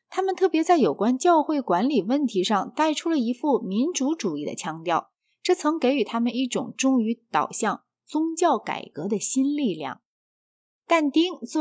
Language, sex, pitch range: Chinese, female, 245-335 Hz